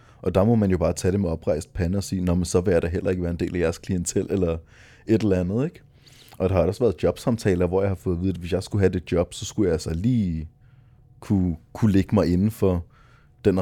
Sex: male